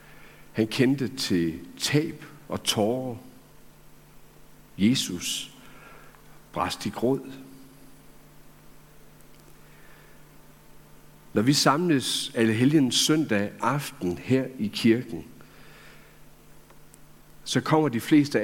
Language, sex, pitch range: Danish, male, 105-140 Hz